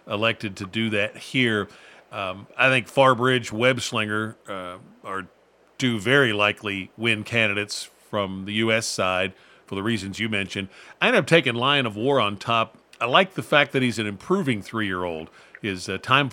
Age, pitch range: 50-69, 100-125 Hz